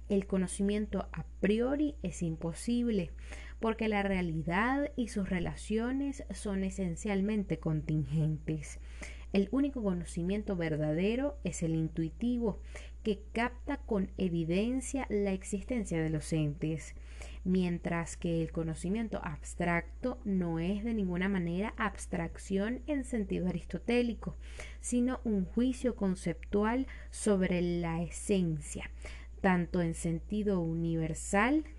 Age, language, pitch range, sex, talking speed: 20-39, Spanish, 165-220 Hz, female, 105 wpm